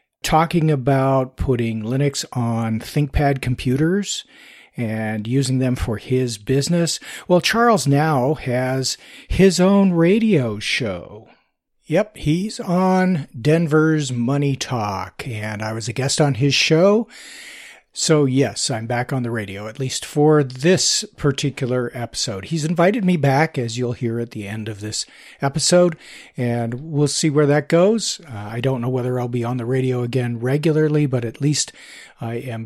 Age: 50-69